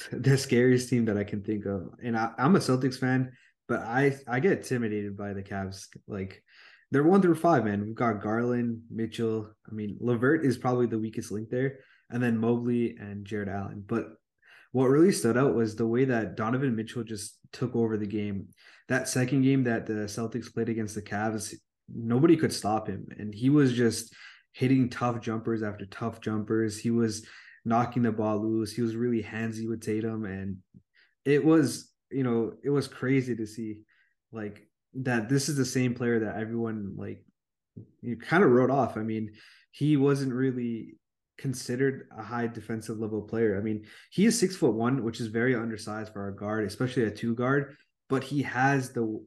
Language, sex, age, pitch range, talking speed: English, male, 20-39, 110-130 Hz, 190 wpm